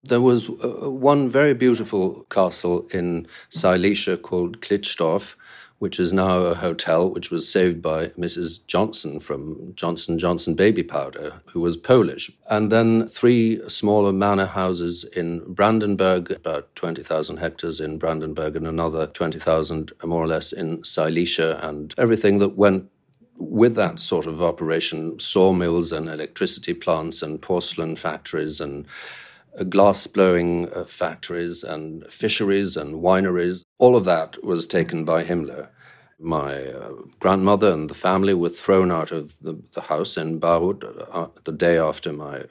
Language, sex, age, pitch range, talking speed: English, male, 50-69, 80-95 Hz, 140 wpm